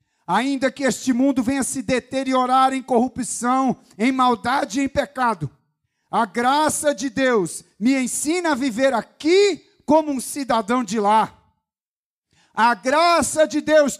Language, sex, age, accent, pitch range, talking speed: Portuguese, male, 40-59, Brazilian, 210-290 Hz, 140 wpm